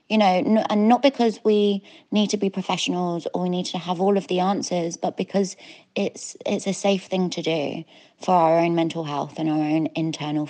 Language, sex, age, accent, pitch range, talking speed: English, female, 20-39, British, 180-235 Hz, 210 wpm